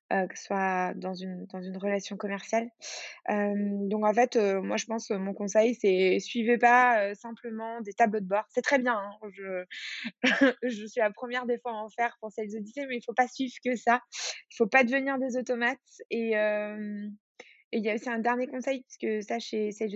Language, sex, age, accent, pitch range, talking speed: French, female, 20-39, French, 210-245 Hz, 230 wpm